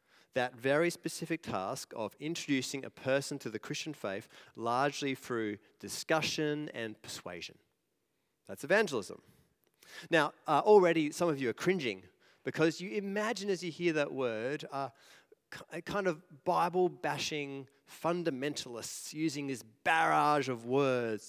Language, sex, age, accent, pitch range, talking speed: English, male, 30-49, Australian, 130-170 Hz, 130 wpm